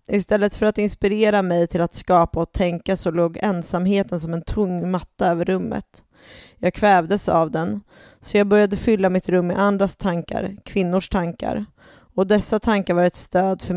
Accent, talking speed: Swedish, 180 wpm